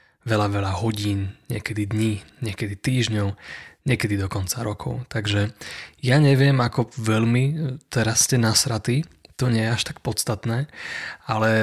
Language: Slovak